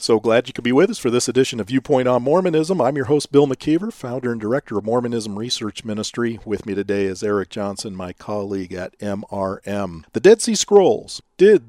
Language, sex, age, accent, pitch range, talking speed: English, male, 40-59, American, 110-155 Hz, 210 wpm